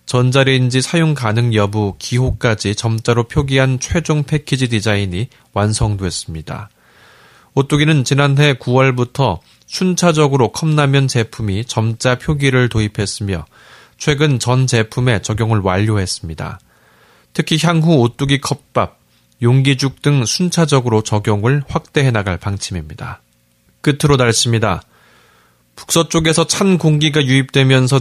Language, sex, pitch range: Korean, male, 105-140 Hz